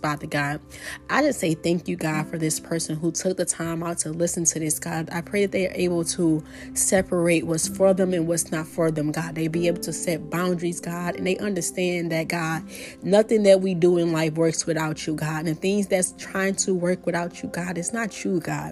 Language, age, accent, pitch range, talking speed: English, 30-49, American, 165-195 Hz, 235 wpm